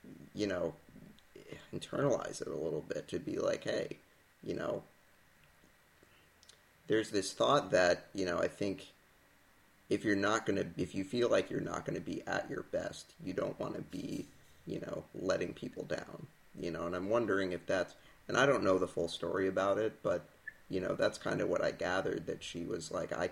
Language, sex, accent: English, male, American